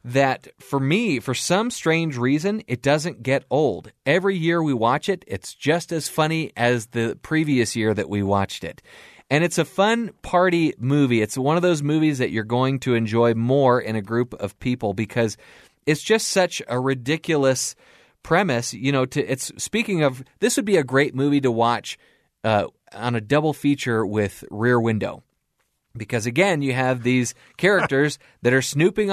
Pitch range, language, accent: 120-155 Hz, English, American